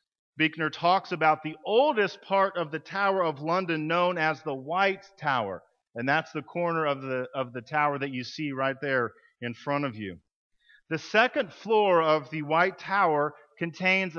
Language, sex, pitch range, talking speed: English, male, 140-190 Hz, 180 wpm